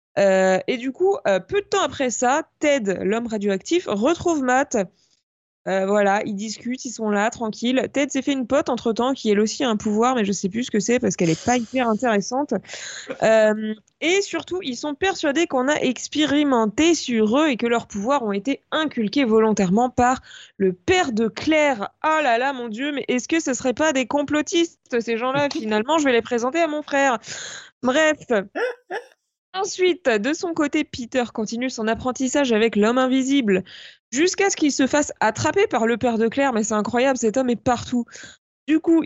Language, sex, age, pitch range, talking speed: French, female, 20-39, 220-285 Hz, 200 wpm